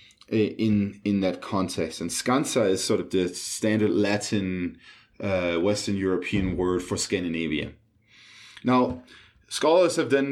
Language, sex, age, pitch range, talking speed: English, male, 30-49, 95-120 Hz, 130 wpm